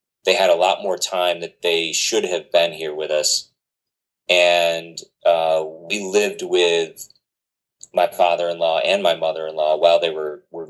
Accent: American